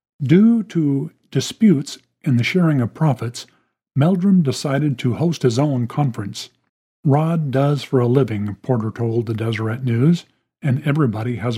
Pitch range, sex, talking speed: 120-155 Hz, male, 145 wpm